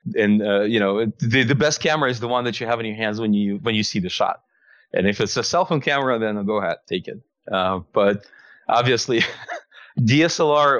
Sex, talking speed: male, 220 wpm